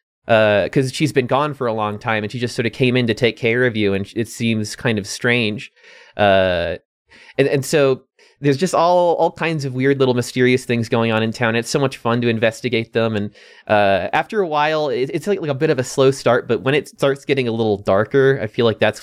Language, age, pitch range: English, 20-39, 105-135 Hz